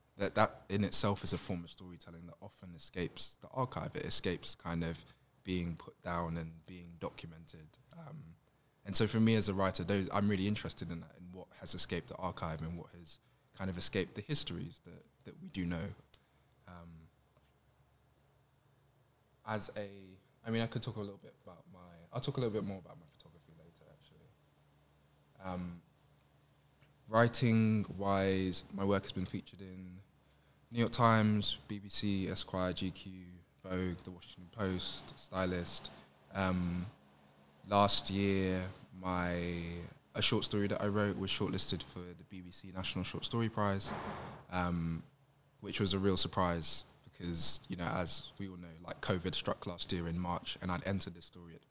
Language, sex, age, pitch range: English, male, 20-39, 85-105 Hz